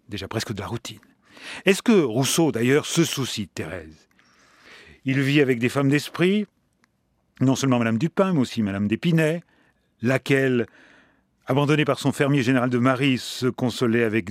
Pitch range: 115-155 Hz